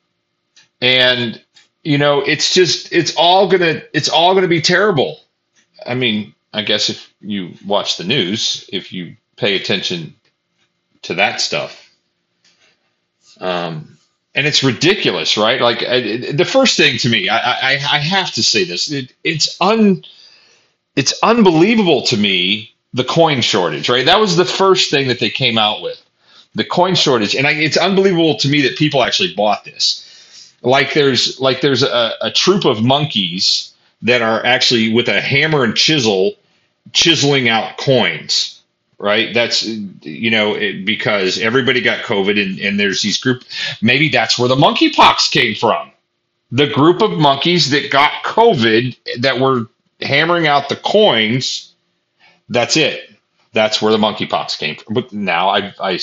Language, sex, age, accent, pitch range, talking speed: English, male, 40-59, American, 115-170 Hz, 165 wpm